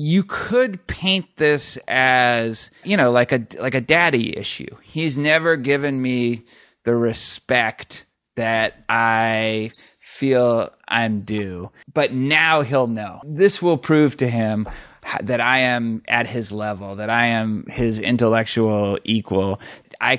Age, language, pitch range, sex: 30-49, English, 110-155 Hz, male